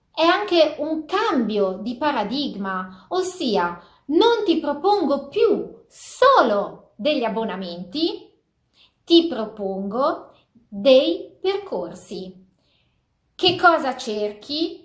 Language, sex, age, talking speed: Italian, female, 30-49, 85 wpm